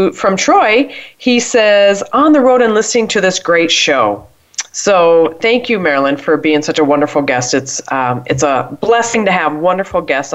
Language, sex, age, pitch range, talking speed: English, female, 40-59, 150-215 Hz, 185 wpm